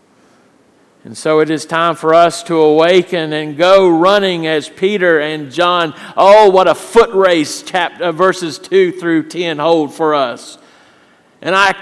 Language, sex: English, male